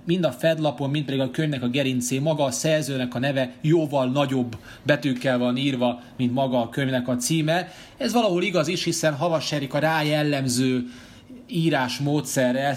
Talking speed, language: 165 wpm, Hungarian